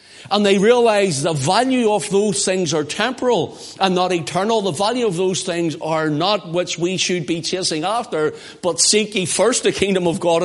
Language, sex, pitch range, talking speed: English, male, 155-205 Hz, 195 wpm